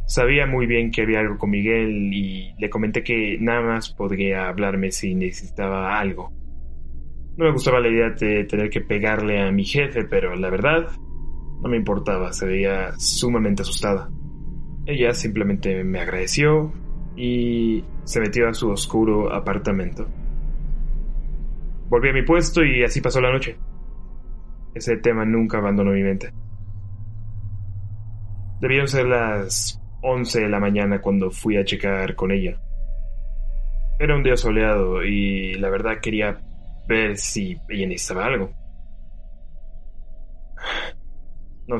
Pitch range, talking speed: 95-120 Hz, 135 wpm